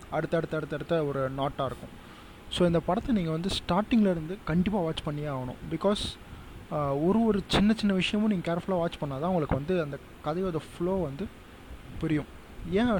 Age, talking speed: 20-39, 155 wpm